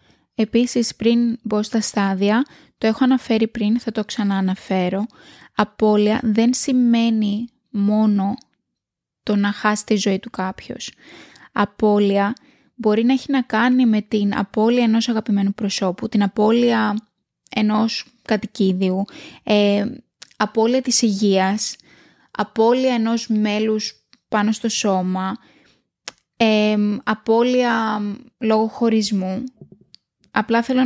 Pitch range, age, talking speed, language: 205-230 Hz, 20-39, 110 wpm, Greek